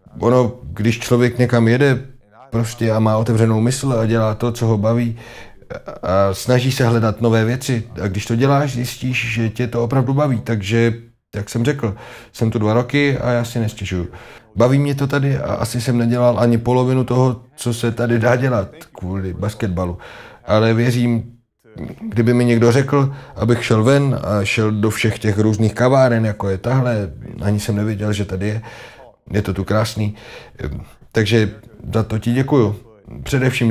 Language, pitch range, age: Czech, 105-120 Hz, 30-49